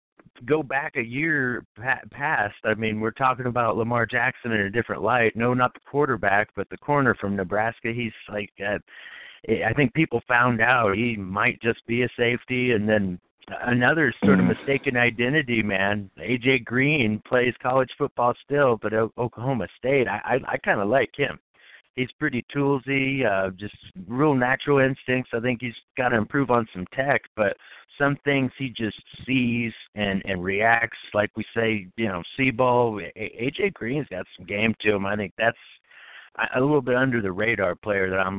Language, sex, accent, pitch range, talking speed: English, male, American, 105-130 Hz, 185 wpm